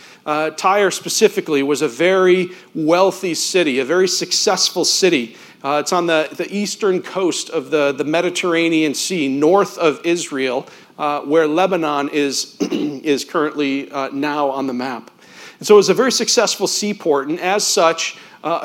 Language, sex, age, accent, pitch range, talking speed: English, male, 40-59, American, 155-195 Hz, 160 wpm